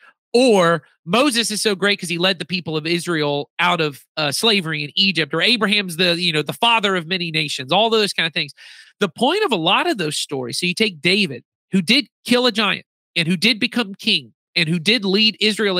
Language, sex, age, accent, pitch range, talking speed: English, male, 40-59, American, 155-225 Hz, 230 wpm